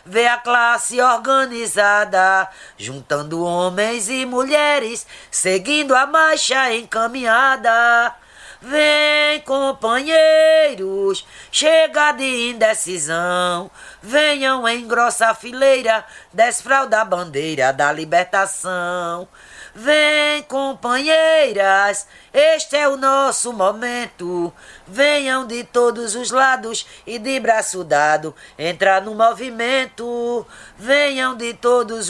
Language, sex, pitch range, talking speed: Portuguese, female, 210-275 Hz, 90 wpm